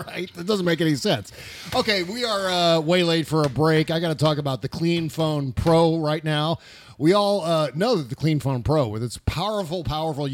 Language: English